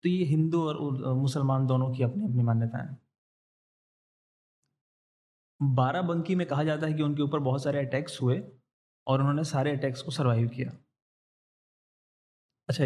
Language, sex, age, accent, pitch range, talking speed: Hindi, male, 30-49, native, 130-150 Hz, 140 wpm